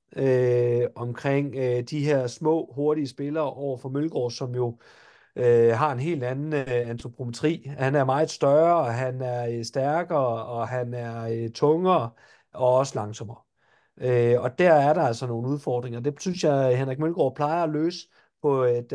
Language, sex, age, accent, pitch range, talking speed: Danish, male, 40-59, native, 125-155 Hz, 175 wpm